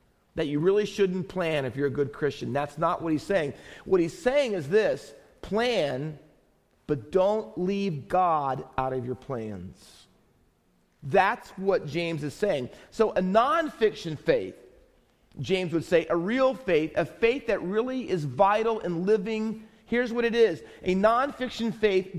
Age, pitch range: 40-59, 160-215 Hz